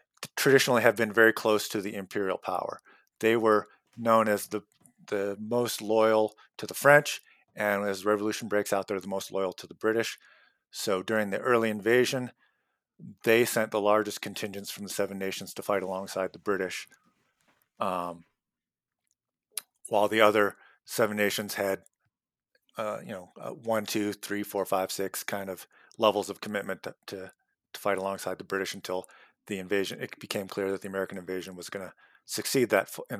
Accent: American